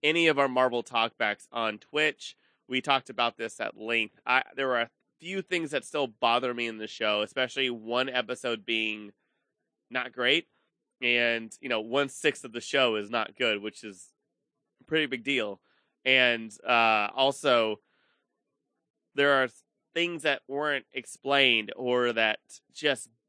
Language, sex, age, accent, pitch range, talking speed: English, male, 20-39, American, 115-135 Hz, 155 wpm